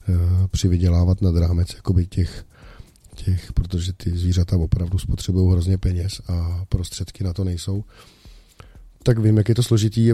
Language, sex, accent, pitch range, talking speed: Czech, male, native, 90-105 Hz, 140 wpm